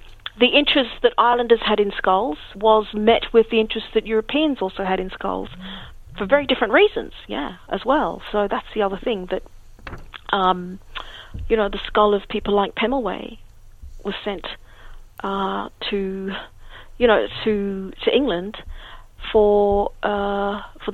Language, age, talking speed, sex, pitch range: English, 40-59, 150 wpm, female, 190-220 Hz